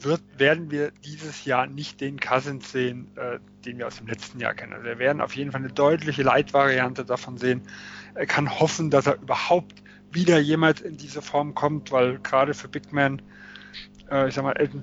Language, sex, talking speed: German, male, 200 wpm